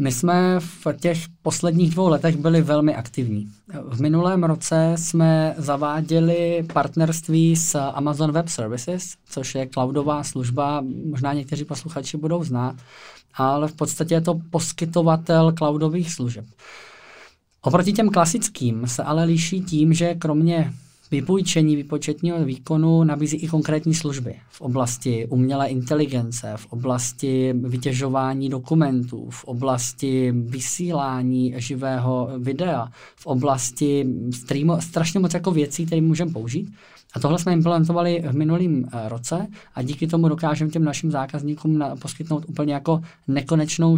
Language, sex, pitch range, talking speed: Czech, male, 135-165 Hz, 125 wpm